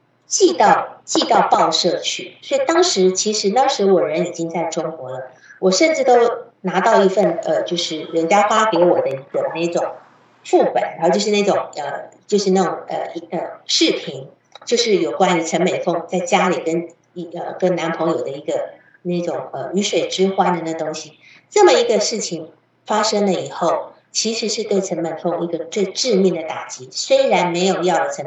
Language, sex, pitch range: Chinese, female, 165-220 Hz